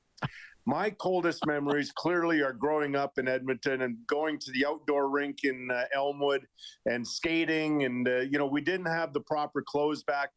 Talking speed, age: 180 wpm, 40-59